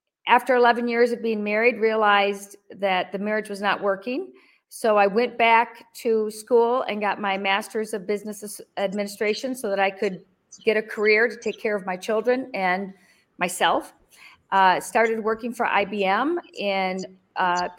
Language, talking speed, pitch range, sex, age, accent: English, 160 wpm, 200-240 Hz, female, 40-59, American